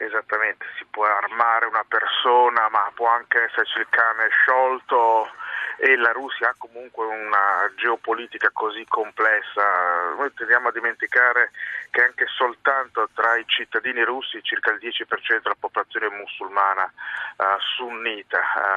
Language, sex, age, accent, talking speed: Italian, male, 30-49, native, 130 wpm